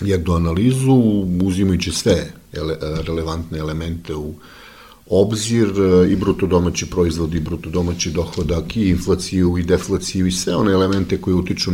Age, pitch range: 50-69, 80-95 Hz